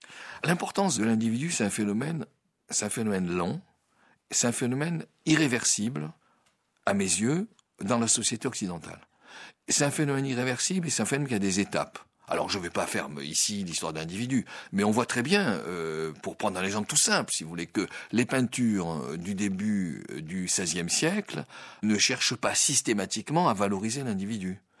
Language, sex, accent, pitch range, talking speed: French, male, French, 100-150 Hz, 170 wpm